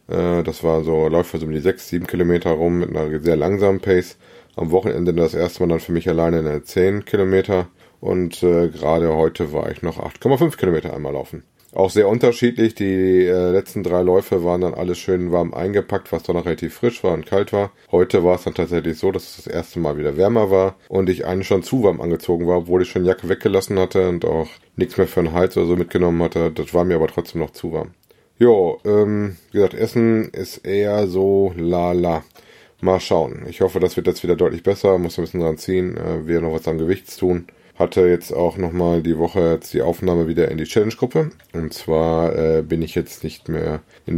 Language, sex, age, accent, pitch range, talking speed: German, male, 20-39, German, 85-95 Hz, 220 wpm